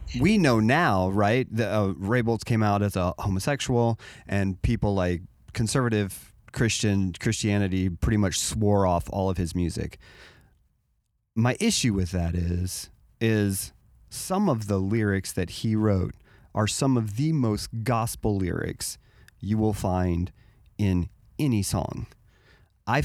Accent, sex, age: American, male, 30-49